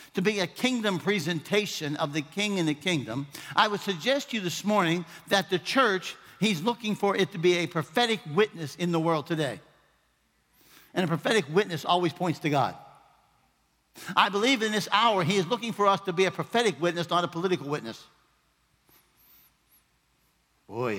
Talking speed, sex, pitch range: 175 wpm, male, 165-215 Hz